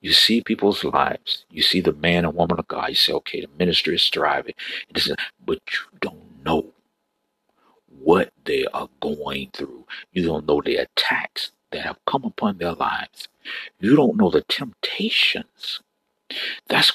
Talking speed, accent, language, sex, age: 160 wpm, American, English, male, 50-69